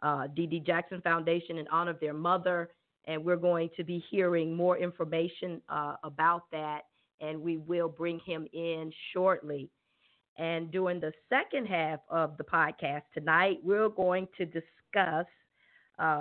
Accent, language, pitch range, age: American, English, 155-180 Hz, 40-59